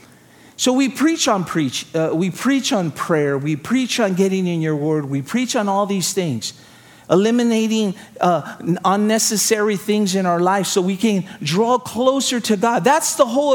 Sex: male